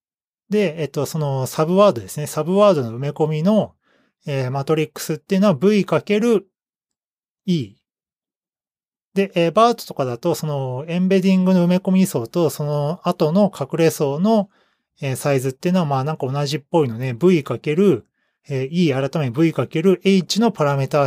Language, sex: Japanese, male